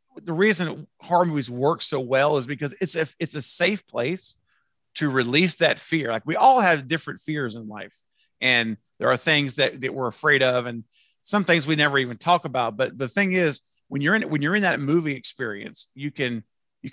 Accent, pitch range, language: American, 130-170 Hz, English